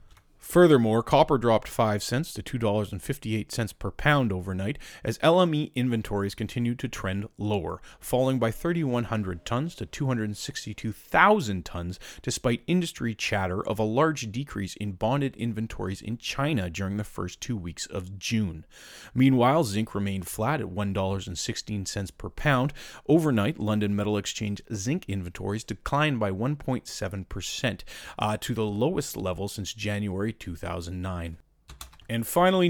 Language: English